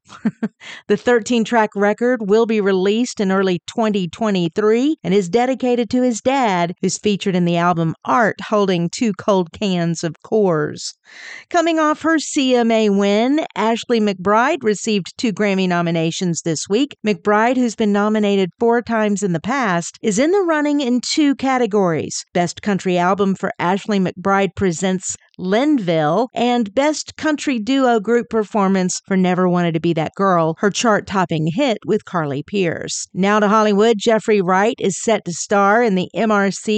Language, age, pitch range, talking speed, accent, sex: English, 50-69, 185-235 Hz, 155 wpm, American, female